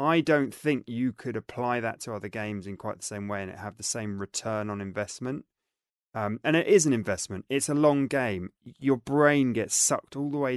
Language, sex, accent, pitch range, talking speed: English, male, British, 105-135 Hz, 225 wpm